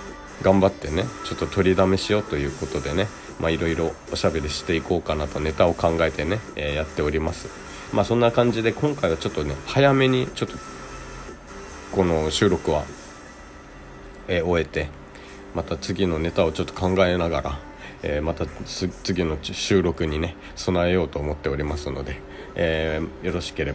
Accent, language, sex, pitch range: native, Japanese, male, 75-95 Hz